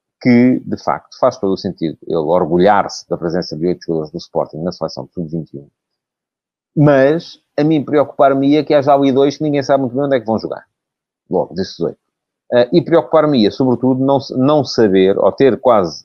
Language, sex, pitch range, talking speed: Portuguese, male, 95-130 Hz, 195 wpm